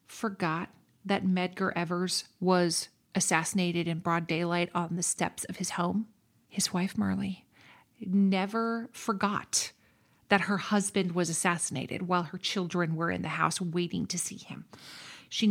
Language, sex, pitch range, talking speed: English, female, 180-230 Hz, 145 wpm